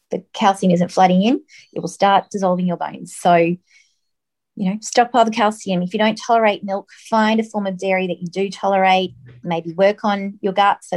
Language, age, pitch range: English, 30-49, 180-230 Hz